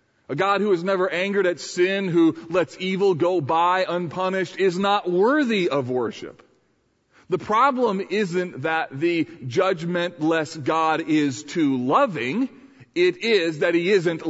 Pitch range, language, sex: 155-215 Hz, English, male